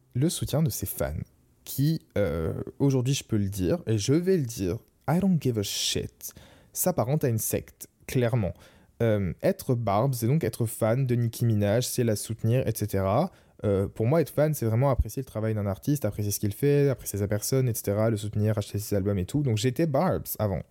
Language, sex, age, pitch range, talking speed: French, male, 20-39, 105-130 Hz, 210 wpm